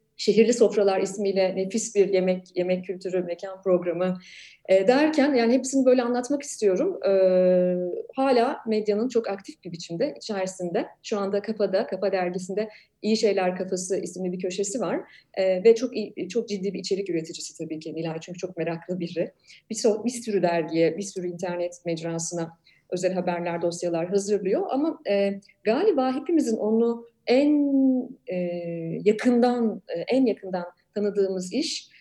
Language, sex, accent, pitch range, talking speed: Turkish, female, native, 180-225 Hz, 145 wpm